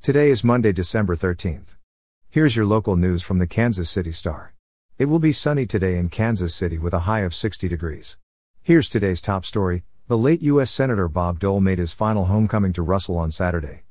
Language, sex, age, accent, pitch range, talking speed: English, male, 50-69, American, 90-115 Hz, 200 wpm